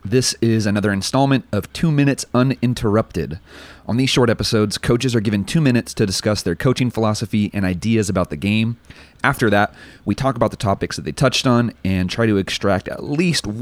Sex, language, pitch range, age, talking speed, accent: male, English, 95-115 Hz, 30-49, 195 wpm, American